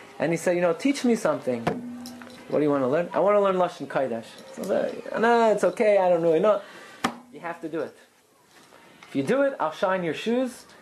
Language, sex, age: English, male, 30-49